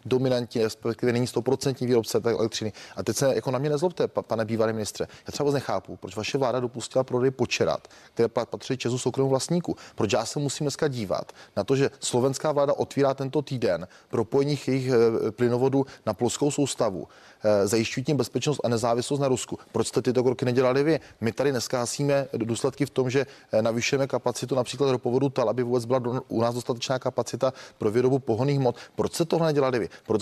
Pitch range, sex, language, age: 115-135 Hz, male, Czech, 30-49